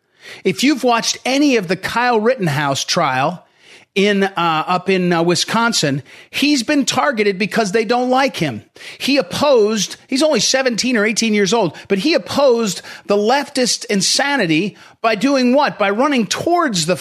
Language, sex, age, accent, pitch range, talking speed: English, male, 40-59, American, 190-265 Hz, 160 wpm